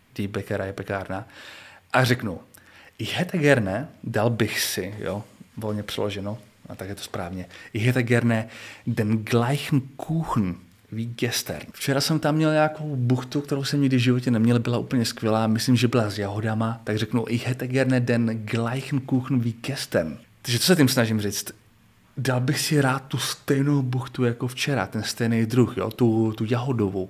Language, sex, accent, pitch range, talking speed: Czech, male, native, 105-125 Hz, 175 wpm